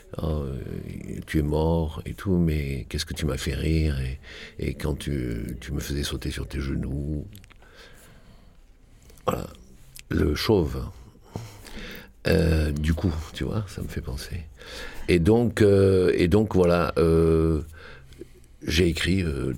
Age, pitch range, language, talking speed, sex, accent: 60-79, 70-90 Hz, French, 130 wpm, male, French